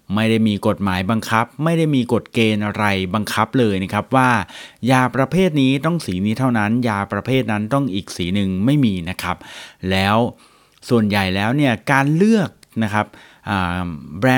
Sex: male